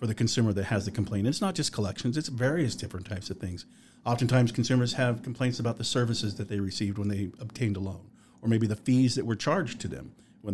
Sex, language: male, English